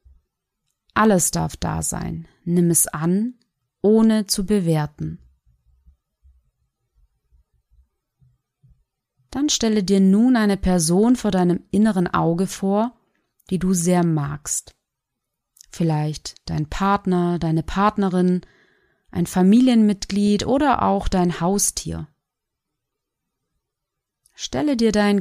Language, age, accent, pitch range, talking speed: German, 30-49, German, 150-205 Hz, 95 wpm